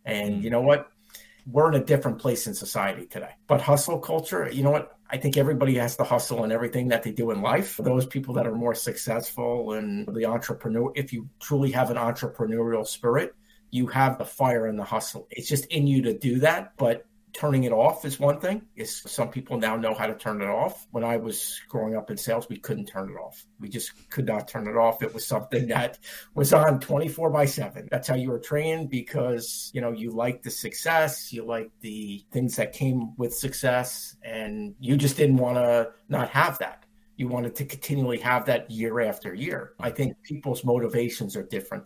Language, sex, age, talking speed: English, male, 50-69, 215 wpm